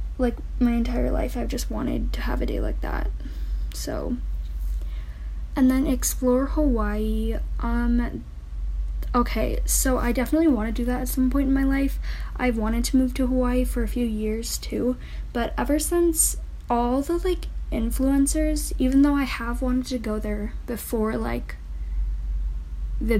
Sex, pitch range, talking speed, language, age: female, 200-250 Hz, 160 wpm, English, 10-29